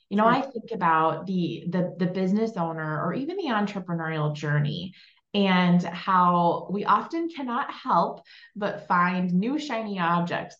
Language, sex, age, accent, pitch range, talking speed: English, female, 20-39, American, 160-195 Hz, 145 wpm